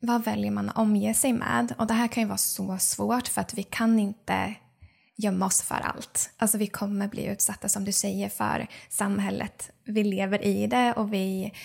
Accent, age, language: native, 20-39, Swedish